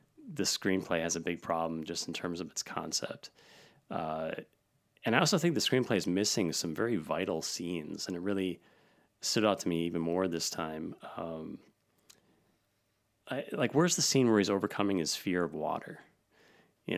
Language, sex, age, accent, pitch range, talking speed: English, male, 30-49, American, 85-100 Hz, 175 wpm